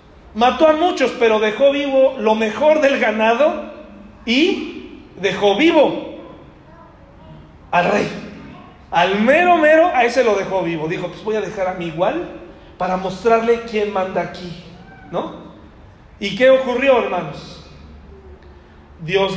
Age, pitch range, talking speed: 40-59, 180-255 Hz, 130 wpm